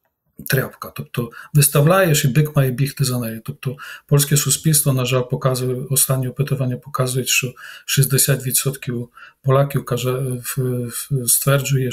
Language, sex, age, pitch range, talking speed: Ukrainian, male, 40-59, 130-145 Hz, 110 wpm